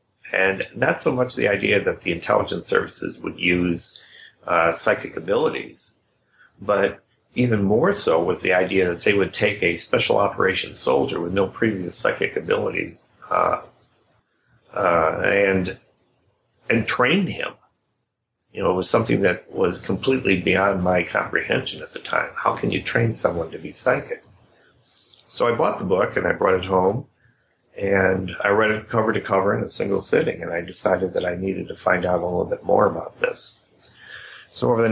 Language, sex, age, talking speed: English, male, 40-59, 175 wpm